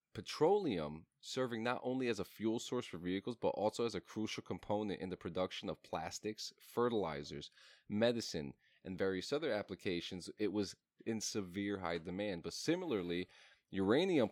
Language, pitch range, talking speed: English, 95-125 Hz, 150 wpm